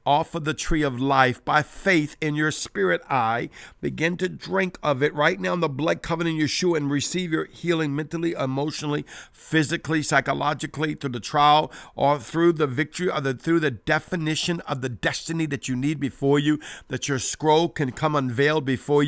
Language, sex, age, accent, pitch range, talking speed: English, male, 50-69, American, 130-155 Hz, 185 wpm